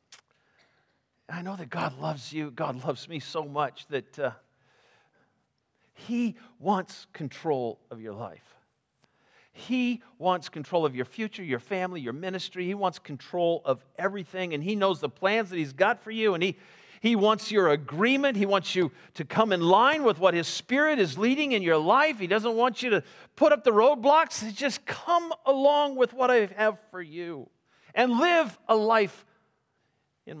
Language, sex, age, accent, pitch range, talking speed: English, male, 50-69, American, 160-225 Hz, 180 wpm